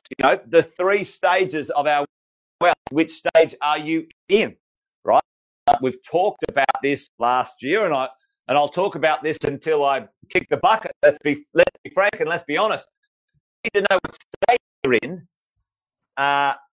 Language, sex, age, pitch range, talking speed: English, male, 30-49, 145-190 Hz, 190 wpm